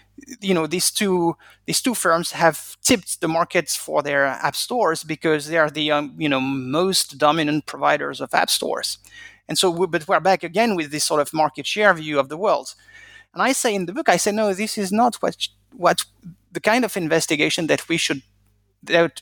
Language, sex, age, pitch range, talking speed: English, male, 30-49, 150-195 Hz, 210 wpm